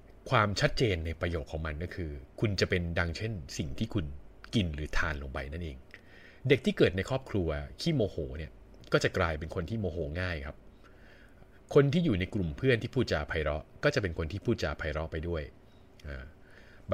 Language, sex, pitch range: Thai, male, 80-110 Hz